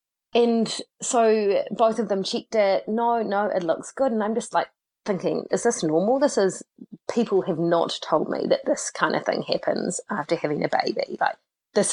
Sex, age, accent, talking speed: female, 30-49, Australian, 195 wpm